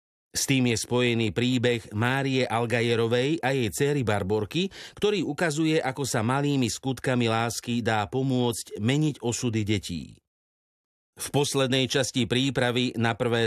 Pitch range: 110-135 Hz